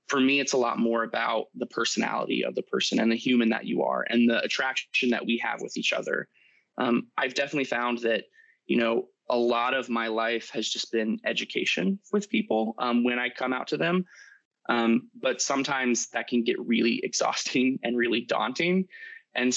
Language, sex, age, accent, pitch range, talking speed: English, male, 20-39, American, 115-135 Hz, 195 wpm